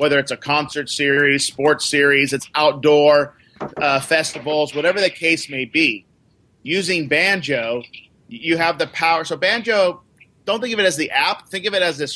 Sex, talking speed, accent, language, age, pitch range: male, 180 wpm, American, English, 40-59, 140-170 Hz